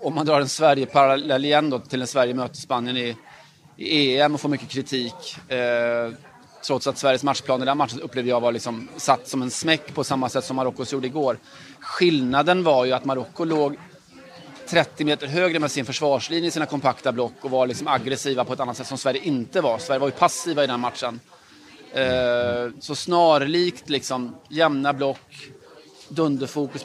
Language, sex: Swedish, male